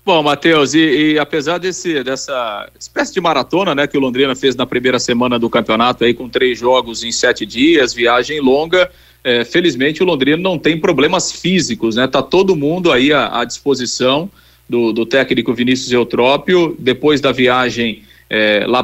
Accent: Brazilian